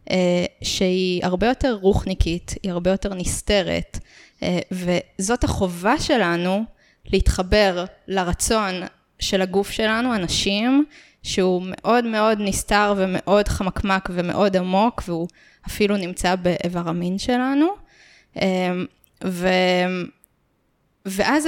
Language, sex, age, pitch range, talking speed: Hebrew, female, 20-39, 185-225 Hz, 90 wpm